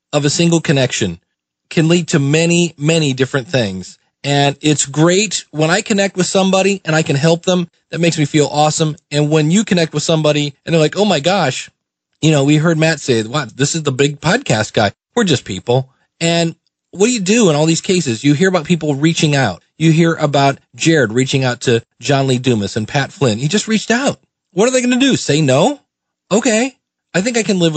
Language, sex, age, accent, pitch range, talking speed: English, male, 40-59, American, 145-190 Hz, 225 wpm